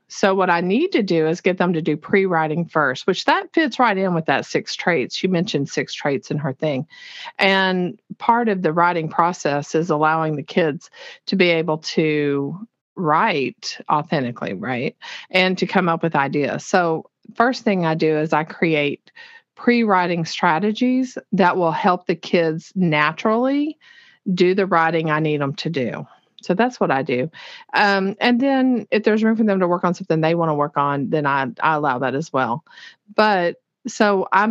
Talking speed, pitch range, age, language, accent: 190 wpm, 160-210 Hz, 50-69, English, American